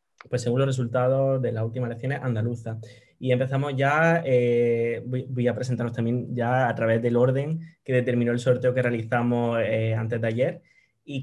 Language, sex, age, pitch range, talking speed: Spanish, male, 20-39, 120-130 Hz, 180 wpm